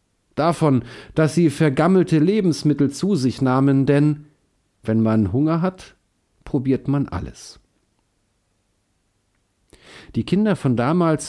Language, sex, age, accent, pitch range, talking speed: German, male, 50-69, German, 105-145 Hz, 105 wpm